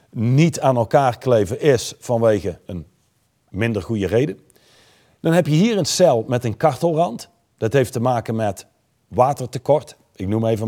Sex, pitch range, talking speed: male, 115-170 Hz, 155 wpm